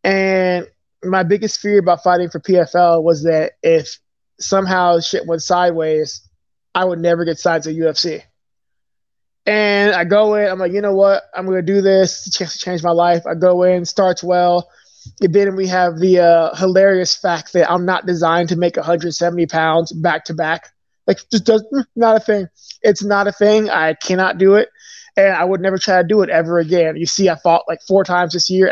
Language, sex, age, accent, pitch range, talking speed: English, male, 20-39, American, 165-195 Hz, 205 wpm